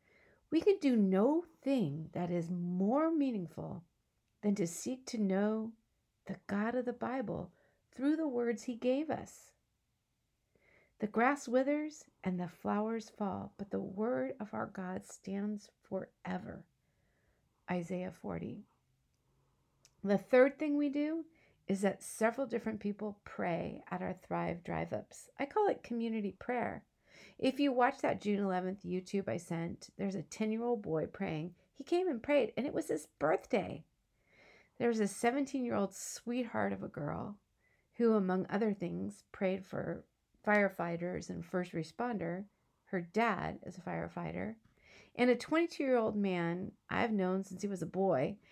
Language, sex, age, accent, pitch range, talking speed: English, female, 50-69, American, 185-255 Hz, 145 wpm